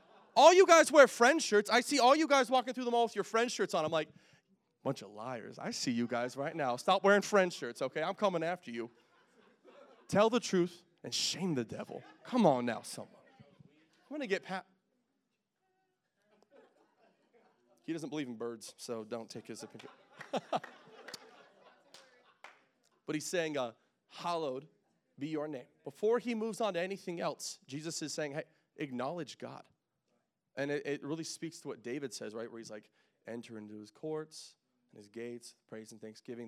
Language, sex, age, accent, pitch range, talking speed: English, male, 30-49, American, 120-190 Hz, 180 wpm